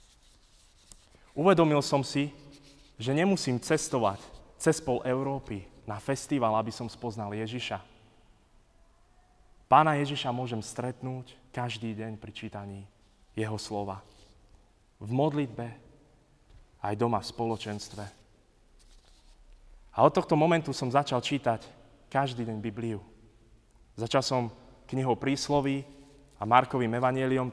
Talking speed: 100 wpm